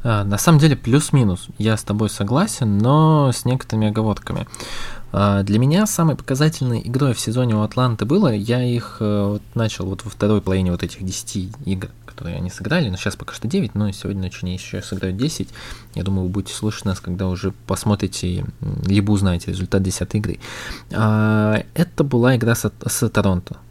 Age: 20-39